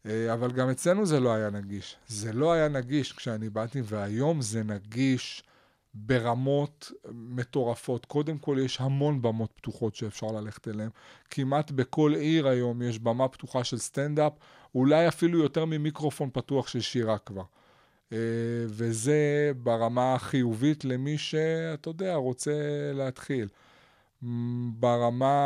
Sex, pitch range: male, 120-150 Hz